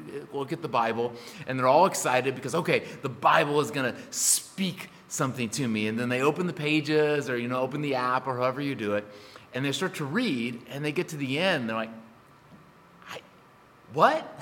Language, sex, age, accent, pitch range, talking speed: English, male, 30-49, American, 130-200 Hz, 210 wpm